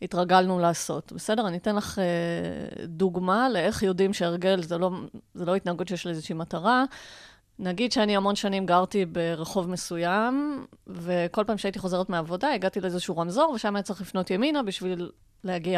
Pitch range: 175-220 Hz